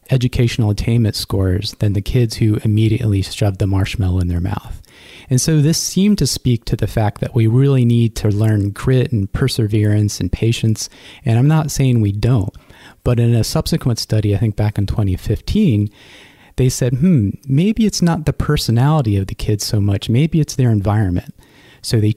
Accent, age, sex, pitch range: American, 30-49, male, 105-130 Hz